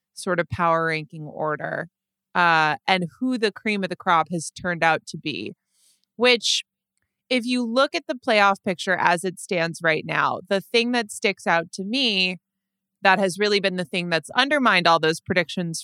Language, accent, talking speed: English, American, 185 wpm